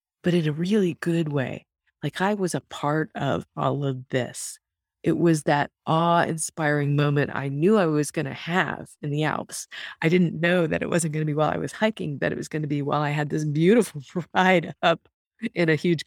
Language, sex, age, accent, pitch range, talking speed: English, female, 40-59, American, 145-170 Hz, 225 wpm